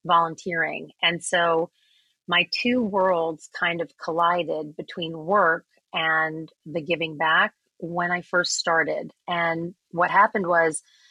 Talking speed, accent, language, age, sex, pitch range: 125 wpm, American, English, 30-49, female, 160-185 Hz